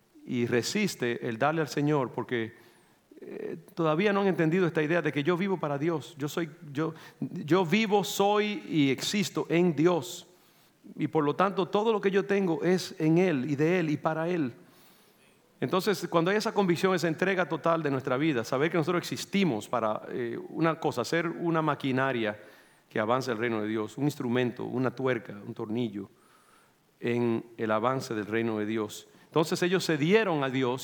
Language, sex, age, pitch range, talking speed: English, male, 40-59, 115-170 Hz, 180 wpm